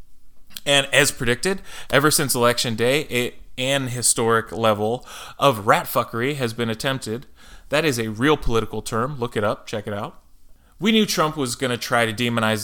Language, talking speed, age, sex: English, 175 wpm, 20-39, male